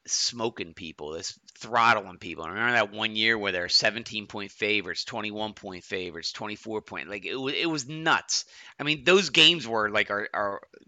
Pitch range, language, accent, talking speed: 100-135 Hz, English, American, 190 wpm